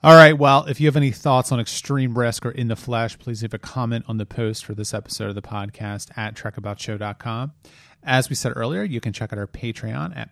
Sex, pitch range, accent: male, 105-130 Hz, American